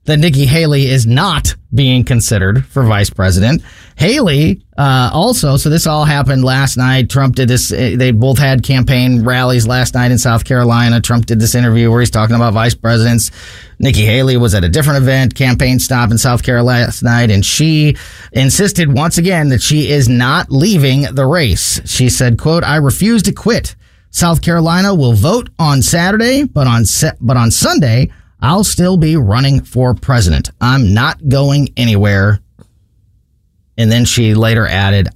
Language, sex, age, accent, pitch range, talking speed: English, male, 30-49, American, 105-135 Hz, 170 wpm